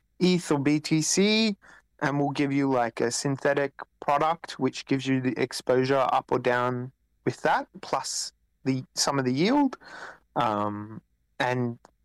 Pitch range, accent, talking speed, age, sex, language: 130-155 Hz, Australian, 145 wpm, 30-49, male, English